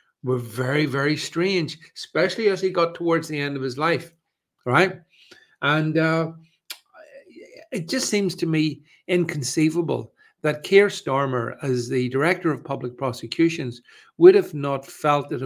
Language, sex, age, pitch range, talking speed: English, male, 60-79, 125-170 Hz, 145 wpm